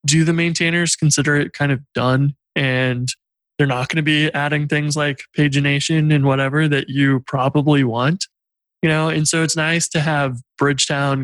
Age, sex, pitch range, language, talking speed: 20-39, male, 130-155 Hz, English, 175 wpm